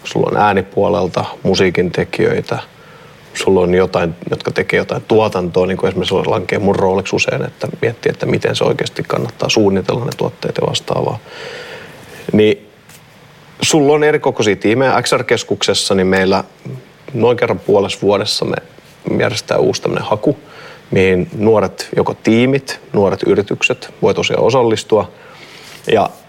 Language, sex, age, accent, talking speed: Finnish, male, 30-49, native, 130 wpm